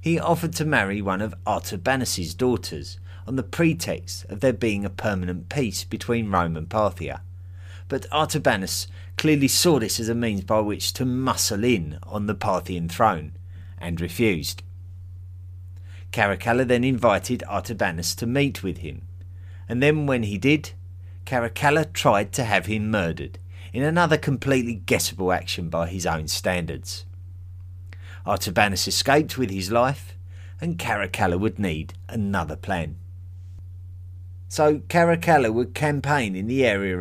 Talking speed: 140 wpm